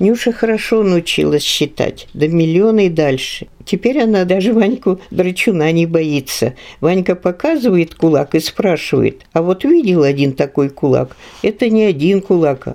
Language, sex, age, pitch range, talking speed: Russian, female, 50-69, 155-210 Hz, 135 wpm